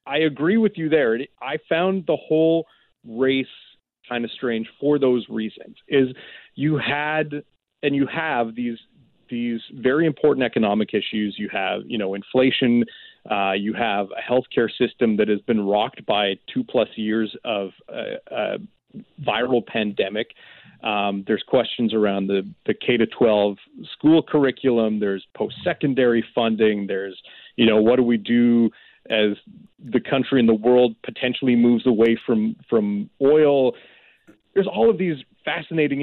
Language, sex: English, male